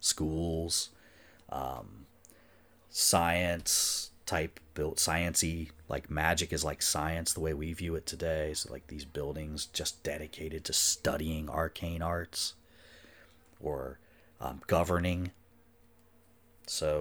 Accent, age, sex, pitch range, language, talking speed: American, 30-49, male, 80-95 Hz, English, 110 wpm